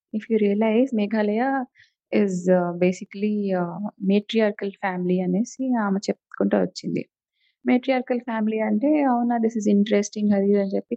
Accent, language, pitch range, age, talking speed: native, Telugu, 190-230 Hz, 20-39, 165 wpm